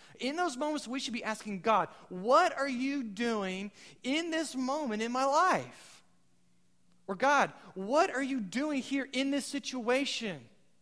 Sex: male